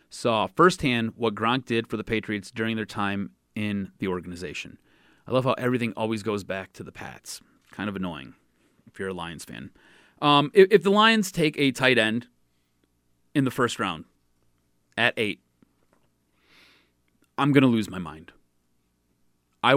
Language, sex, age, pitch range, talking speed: English, male, 30-49, 95-125 Hz, 165 wpm